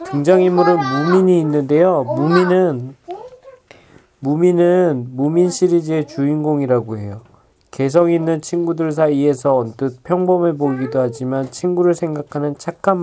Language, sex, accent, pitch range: Korean, male, native, 125-170 Hz